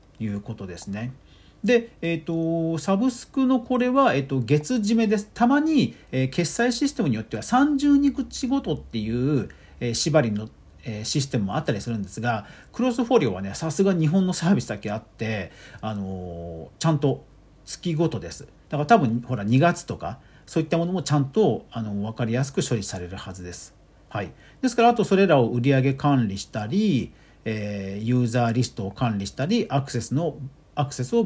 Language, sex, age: Japanese, male, 40-59